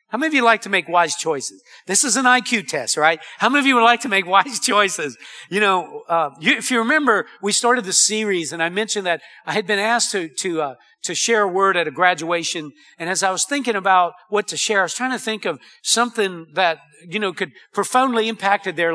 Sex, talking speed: male, 245 wpm